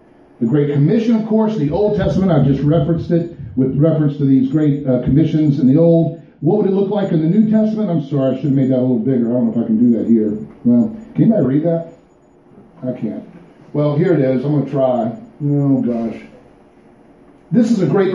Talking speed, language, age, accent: 235 wpm, English, 50-69, American